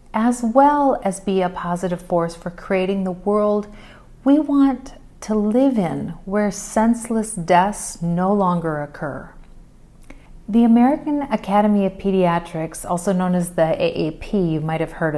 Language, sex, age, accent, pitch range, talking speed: English, female, 40-59, American, 175-225 Hz, 140 wpm